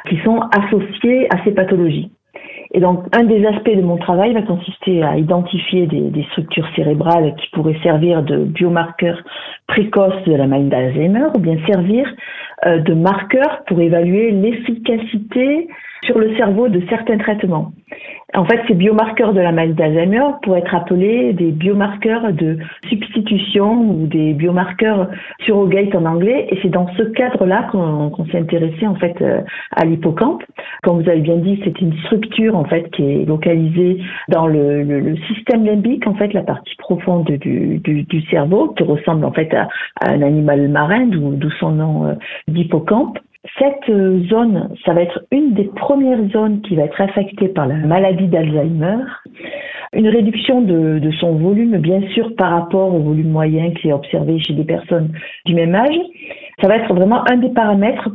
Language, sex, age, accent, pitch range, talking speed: French, female, 50-69, French, 170-225 Hz, 175 wpm